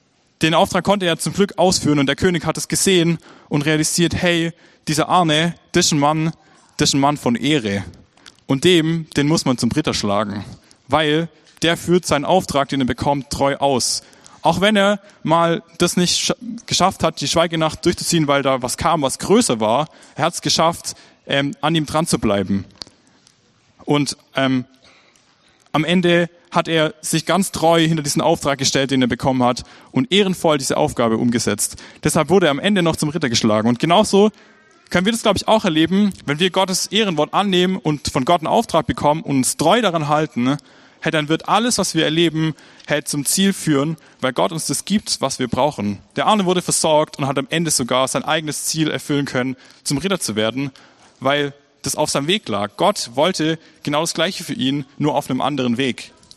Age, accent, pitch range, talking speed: 20-39, German, 140-175 Hz, 190 wpm